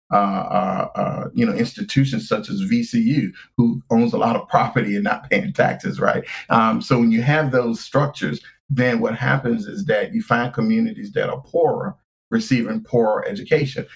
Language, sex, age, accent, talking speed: English, male, 40-59, American, 175 wpm